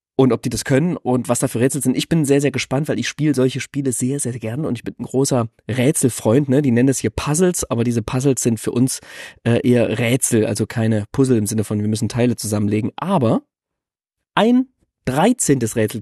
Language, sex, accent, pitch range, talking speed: German, male, German, 115-150 Hz, 220 wpm